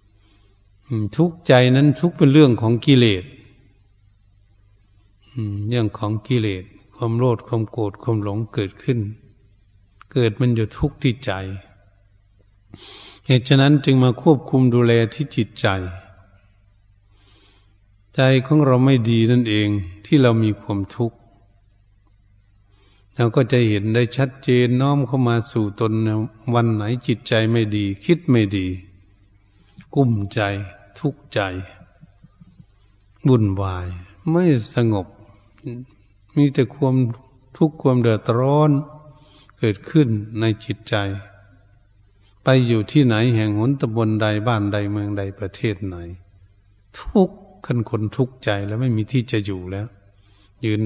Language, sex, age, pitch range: Thai, male, 70-89, 100-125 Hz